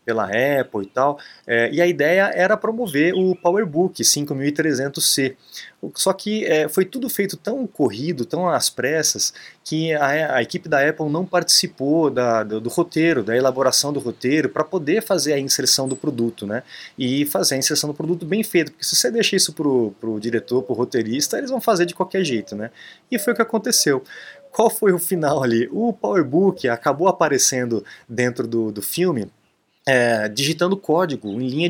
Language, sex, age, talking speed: Portuguese, male, 20-39, 180 wpm